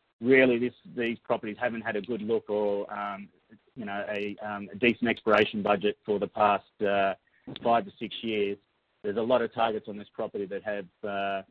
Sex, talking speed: male, 200 wpm